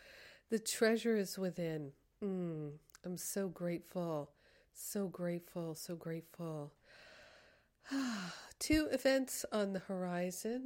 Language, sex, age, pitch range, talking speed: English, female, 50-69, 175-200 Hz, 95 wpm